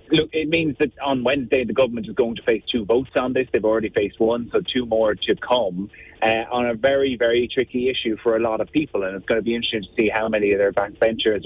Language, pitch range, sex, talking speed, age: English, 105-130 Hz, male, 260 wpm, 30-49